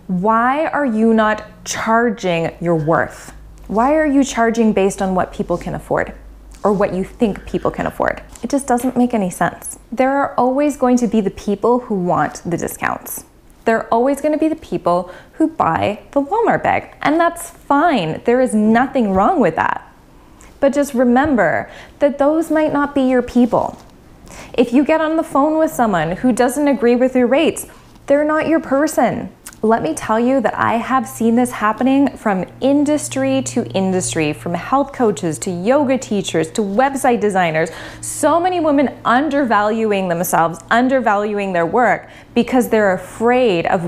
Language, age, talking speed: English, 20-39, 170 wpm